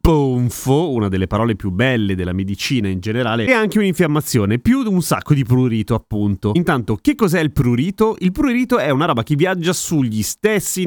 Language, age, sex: Italian, 30-49, male